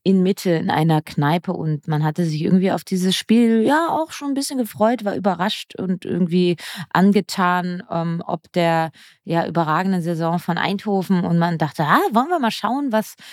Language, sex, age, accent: German, female, 20-39, German